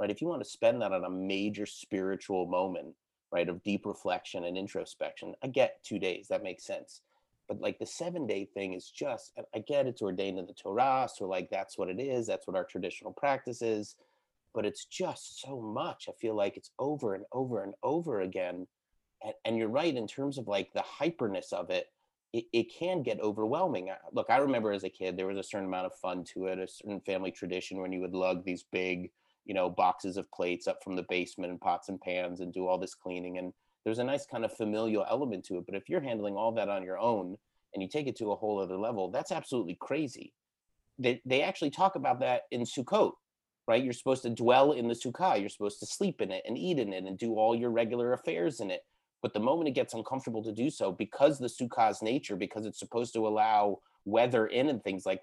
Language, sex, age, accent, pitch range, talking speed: English, male, 30-49, American, 95-115 Hz, 230 wpm